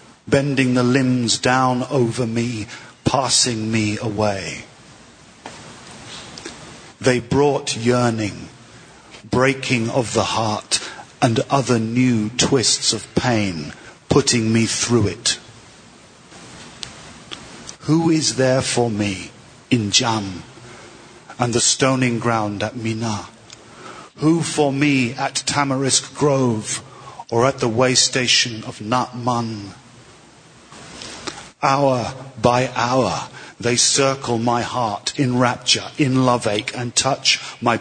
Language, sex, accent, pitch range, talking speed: English, male, British, 110-130 Hz, 110 wpm